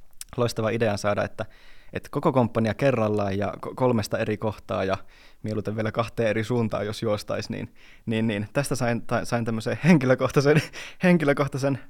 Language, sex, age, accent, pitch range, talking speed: Finnish, male, 20-39, native, 100-120 Hz, 145 wpm